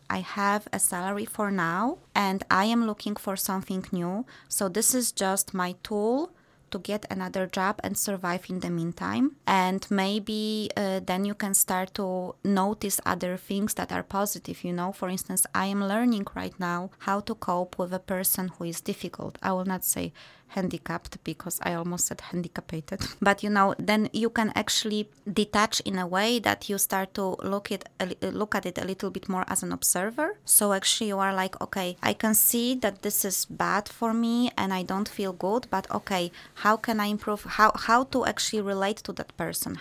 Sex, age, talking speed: female, 20-39, 195 wpm